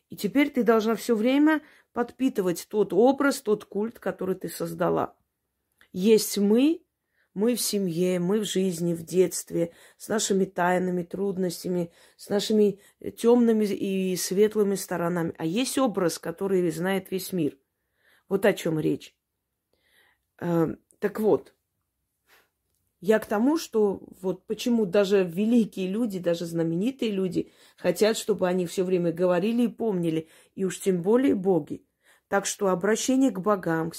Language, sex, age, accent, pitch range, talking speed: Russian, female, 30-49, native, 175-220 Hz, 140 wpm